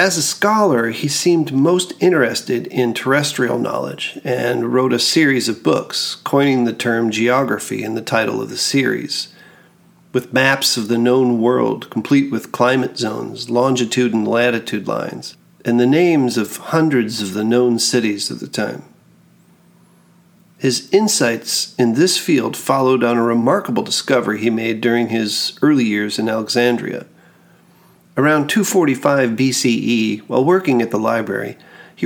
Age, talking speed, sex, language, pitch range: 40-59, 150 wpm, male, English, 115-170 Hz